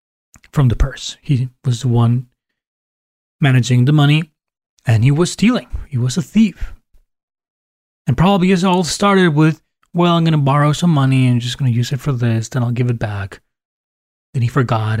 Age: 30-49